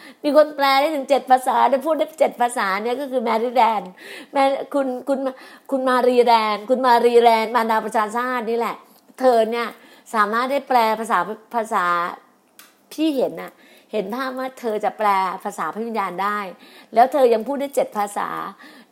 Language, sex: Thai, female